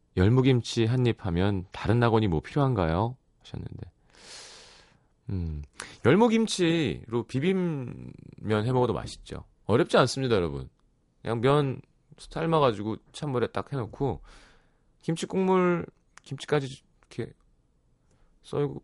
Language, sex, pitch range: Korean, male, 95-155 Hz